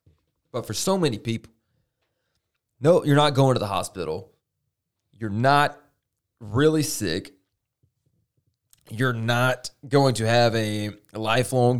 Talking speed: 115 wpm